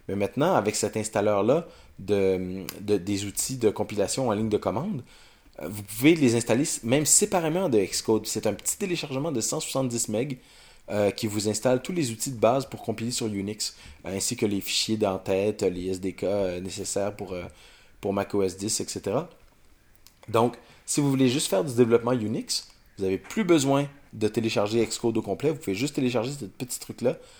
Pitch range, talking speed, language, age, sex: 95-120 Hz, 175 wpm, French, 30-49, male